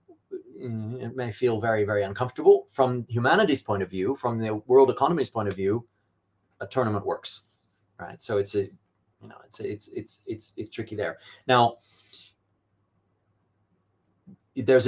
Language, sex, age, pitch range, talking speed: English, male, 30-49, 100-120 Hz, 150 wpm